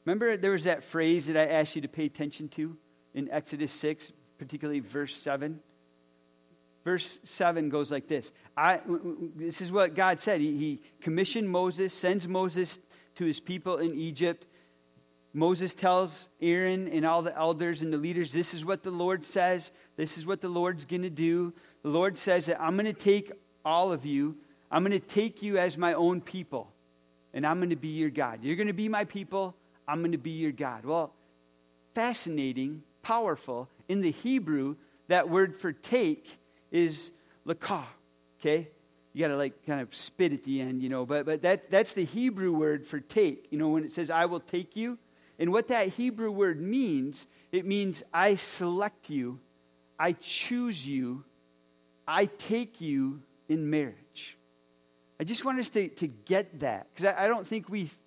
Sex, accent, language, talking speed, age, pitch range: male, American, English, 190 wpm, 40-59, 145-185 Hz